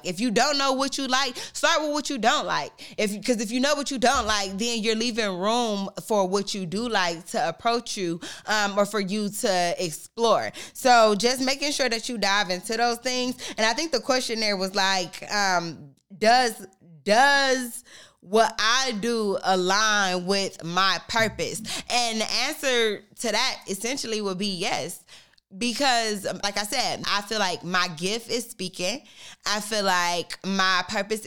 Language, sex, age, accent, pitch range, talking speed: English, female, 20-39, American, 175-225 Hz, 180 wpm